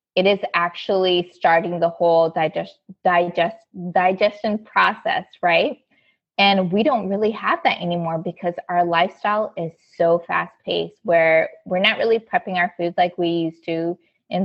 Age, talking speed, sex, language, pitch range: 20-39, 155 wpm, female, English, 165-195 Hz